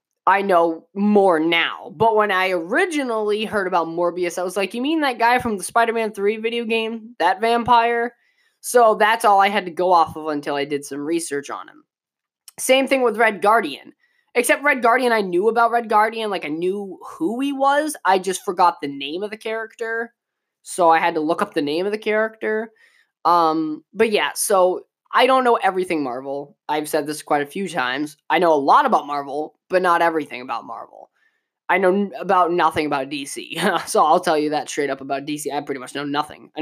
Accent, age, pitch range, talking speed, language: American, 20-39, 155-230 Hz, 210 wpm, English